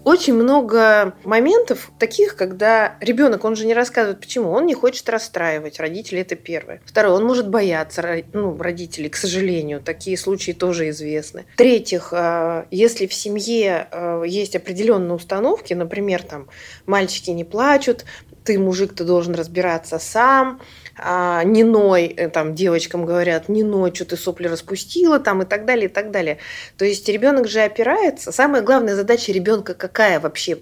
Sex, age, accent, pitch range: female, 30-49, native, 175-230 Hz